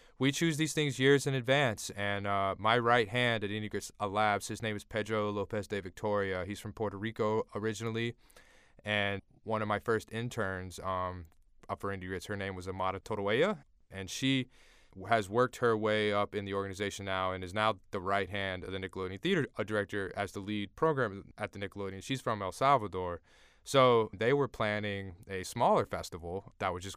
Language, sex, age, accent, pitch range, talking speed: English, male, 20-39, American, 95-110 Hz, 190 wpm